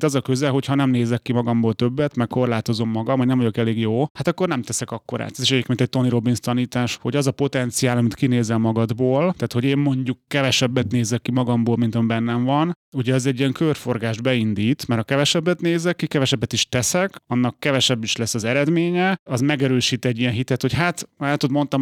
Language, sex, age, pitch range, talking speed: Hungarian, male, 30-49, 120-140 Hz, 215 wpm